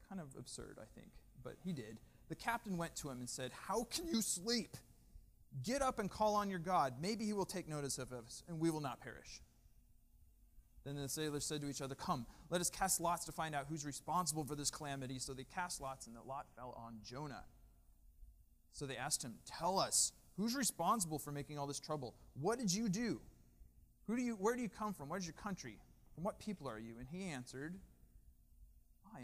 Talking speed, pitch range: 220 wpm, 125-170 Hz